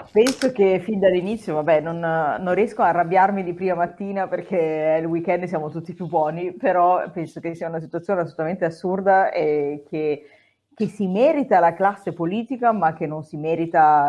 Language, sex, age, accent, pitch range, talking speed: Italian, female, 30-49, native, 150-180 Hz, 185 wpm